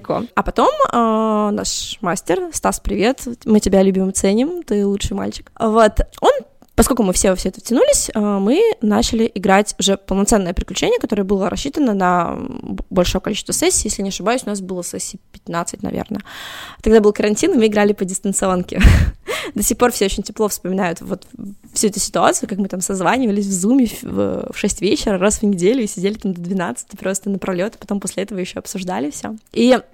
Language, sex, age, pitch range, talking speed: Russian, female, 20-39, 195-245 Hz, 185 wpm